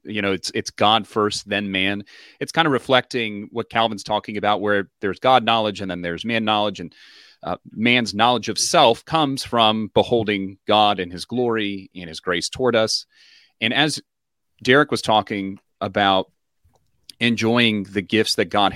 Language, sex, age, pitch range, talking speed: English, male, 30-49, 95-120 Hz, 175 wpm